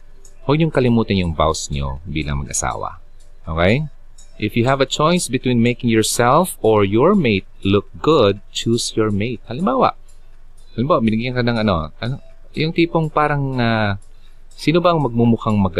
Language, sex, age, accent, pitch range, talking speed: Filipino, male, 30-49, native, 90-120 Hz, 150 wpm